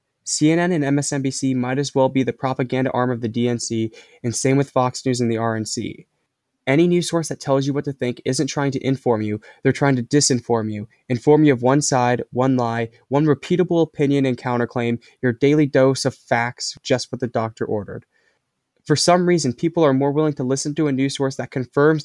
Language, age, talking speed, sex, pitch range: English, 10-29, 210 wpm, male, 120-145 Hz